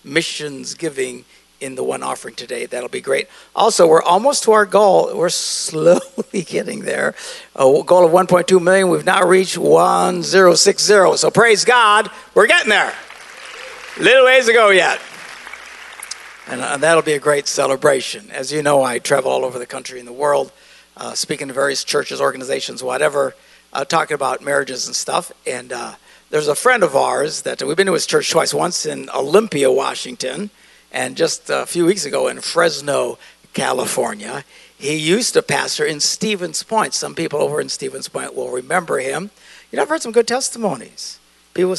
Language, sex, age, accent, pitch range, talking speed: English, male, 60-79, American, 150-250 Hz, 185 wpm